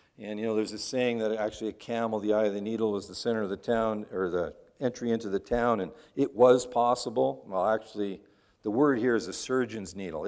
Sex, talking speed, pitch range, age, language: male, 235 wpm, 120-175 Hz, 50-69, English